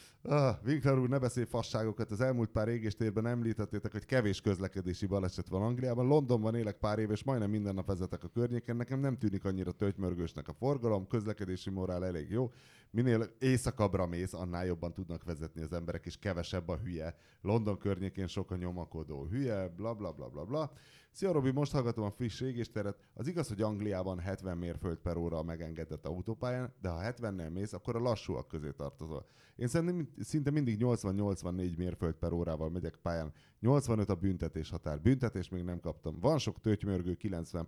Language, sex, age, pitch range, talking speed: Hungarian, male, 30-49, 90-120 Hz, 180 wpm